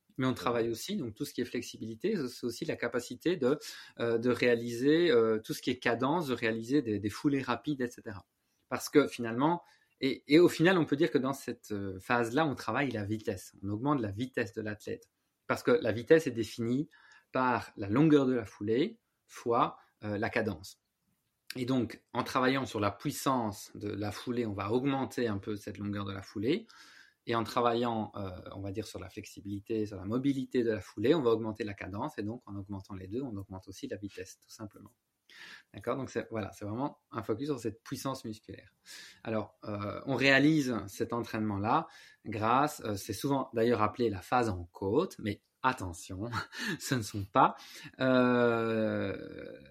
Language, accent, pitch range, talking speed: French, French, 105-130 Hz, 190 wpm